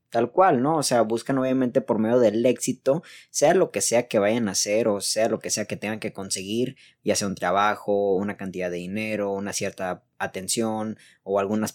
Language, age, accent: Spanish, 20-39, Mexican